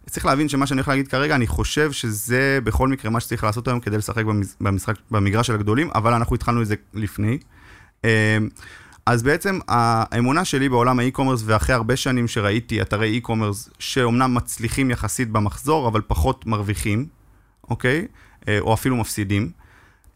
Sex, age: male, 30-49